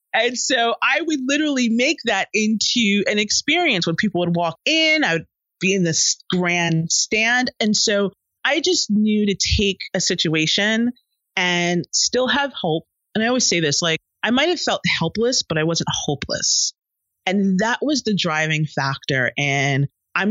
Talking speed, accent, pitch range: 170 wpm, American, 150-210 Hz